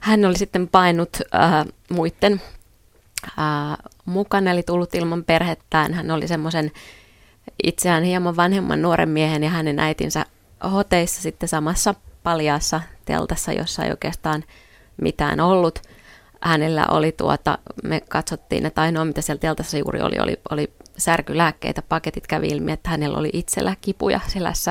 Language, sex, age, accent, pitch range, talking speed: Finnish, female, 20-39, native, 160-195 Hz, 140 wpm